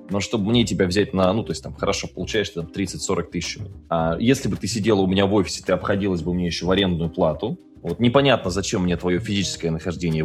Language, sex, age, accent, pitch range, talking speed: Russian, male, 20-39, native, 85-130 Hz, 210 wpm